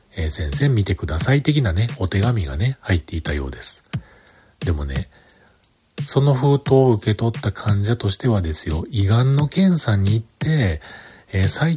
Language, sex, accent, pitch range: Japanese, male, native, 90-130 Hz